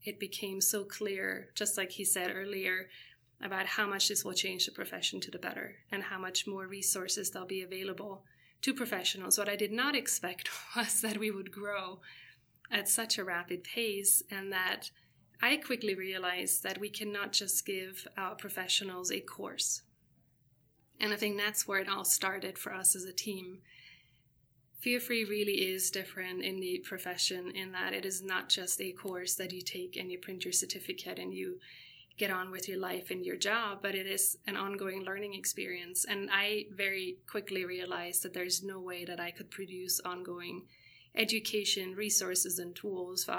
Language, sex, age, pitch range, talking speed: English, female, 20-39, 180-200 Hz, 185 wpm